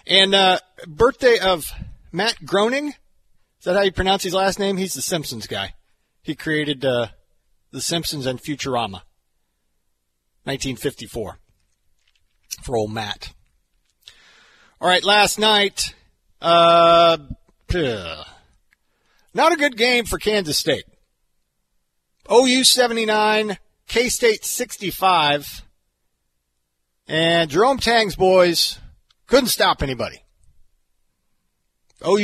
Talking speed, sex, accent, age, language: 95 wpm, male, American, 40-59, English